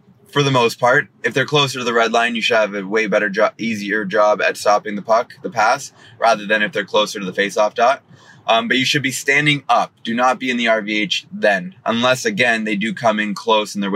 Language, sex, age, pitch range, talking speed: English, male, 20-39, 110-140 Hz, 250 wpm